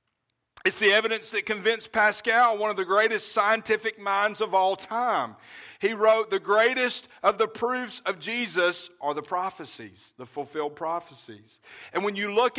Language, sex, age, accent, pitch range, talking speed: English, male, 50-69, American, 180-225 Hz, 160 wpm